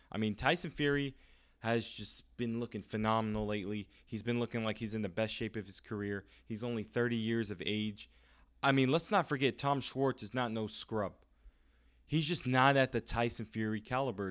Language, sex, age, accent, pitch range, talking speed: English, male, 20-39, American, 105-120 Hz, 195 wpm